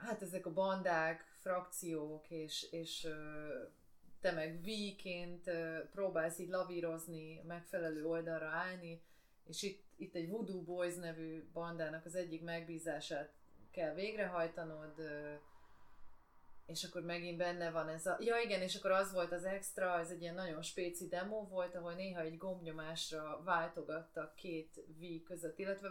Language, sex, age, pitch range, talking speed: Hungarian, female, 30-49, 165-190 Hz, 140 wpm